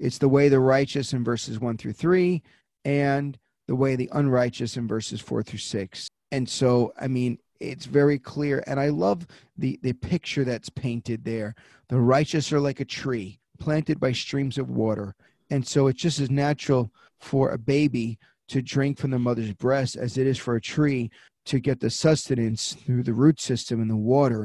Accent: American